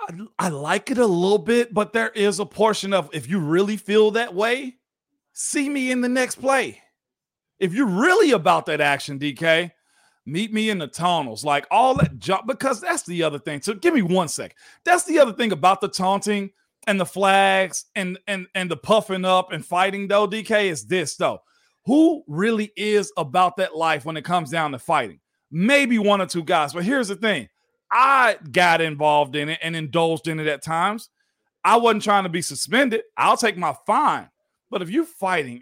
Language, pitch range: English, 165-220 Hz